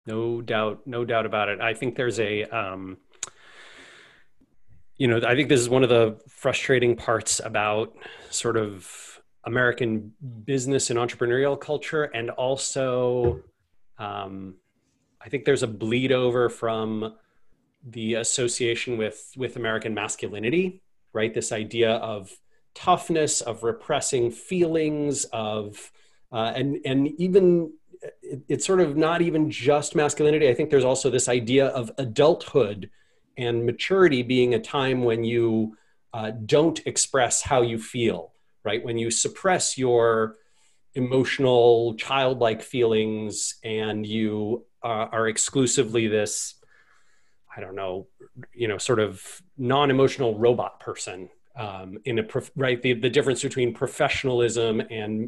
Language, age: English, 30-49